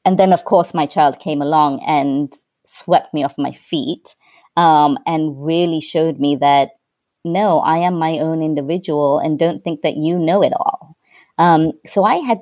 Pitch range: 155-210 Hz